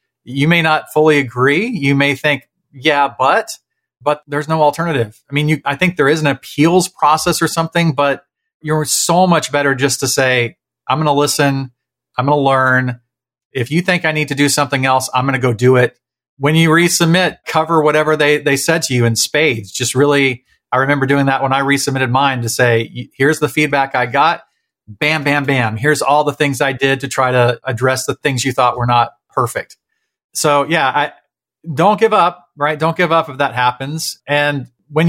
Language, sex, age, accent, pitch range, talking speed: English, male, 40-59, American, 130-160 Hz, 205 wpm